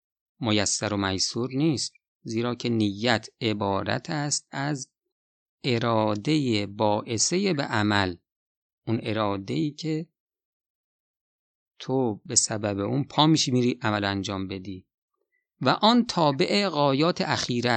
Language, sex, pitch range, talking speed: Persian, male, 110-155 Hz, 110 wpm